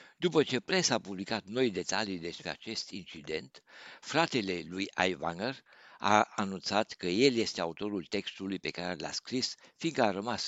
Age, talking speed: 60-79, 155 wpm